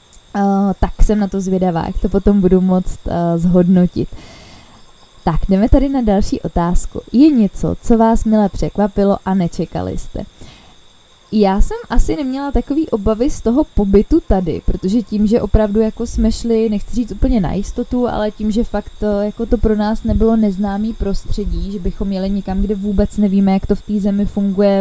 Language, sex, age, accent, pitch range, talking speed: Czech, female, 20-39, native, 195-215 Hz, 180 wpm